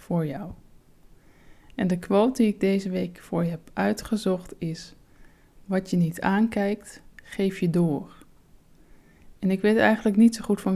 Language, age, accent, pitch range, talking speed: Dutch, 20-39, Dutch, 175-200 Hz, 160 wpm